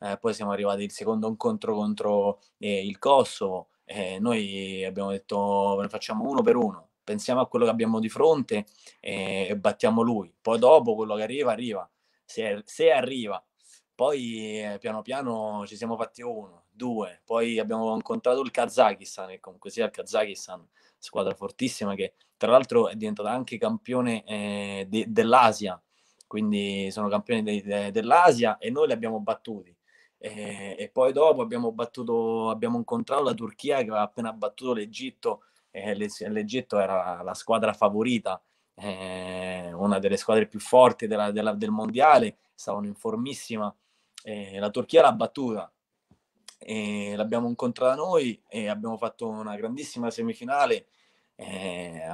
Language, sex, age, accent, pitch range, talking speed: Italian, male, 20-39, native, 100-125 Hz, 155 wpm